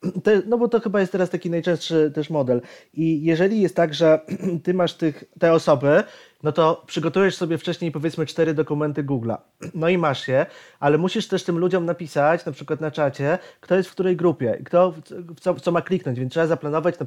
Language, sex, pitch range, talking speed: Polish, male, 150-185 Hz, 195 wpm